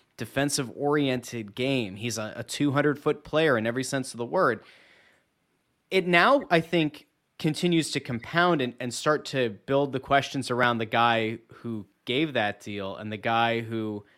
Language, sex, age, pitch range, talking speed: English, male, 30-49, 120-160 Hz, 170 wpm